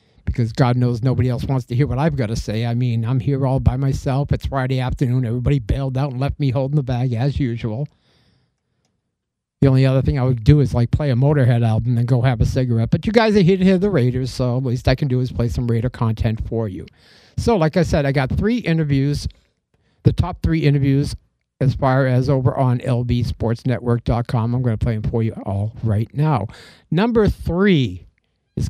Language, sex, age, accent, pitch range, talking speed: English, male, 50-69, American, 115-140 Hz, 220 wpm